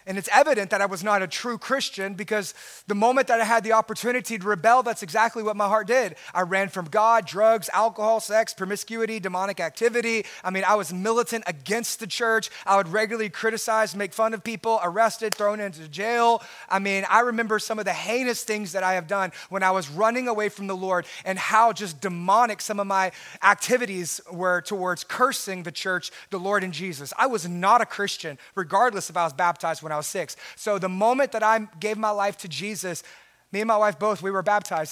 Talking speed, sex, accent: 215 wpm, male, American